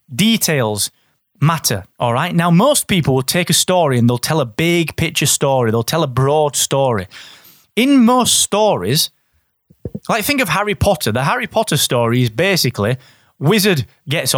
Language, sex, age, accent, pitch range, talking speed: English, male, 30-49, British, 130-180 Hz, 165 wpm